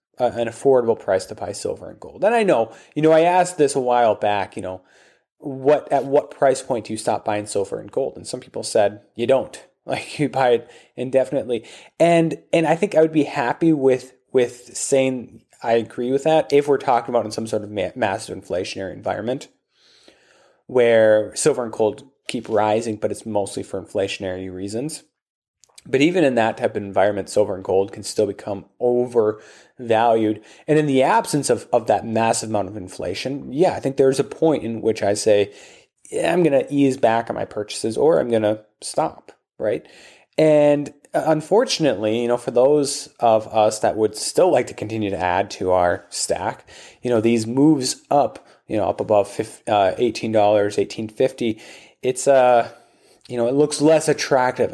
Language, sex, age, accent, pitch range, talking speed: English, male, 20-39, American, 105-140 Hz, 185 wpm